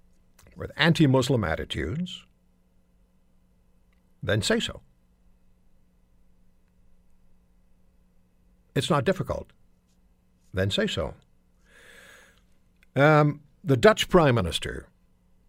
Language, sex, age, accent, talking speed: English, male, 60-79, American, 65 wpm